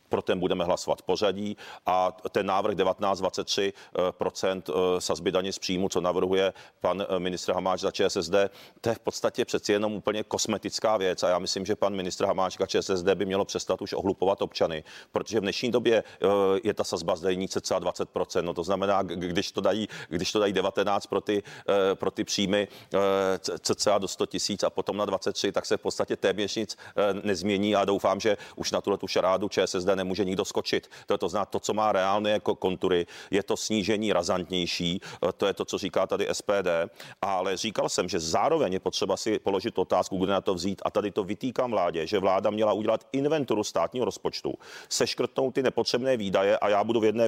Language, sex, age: Czech, male, 40-59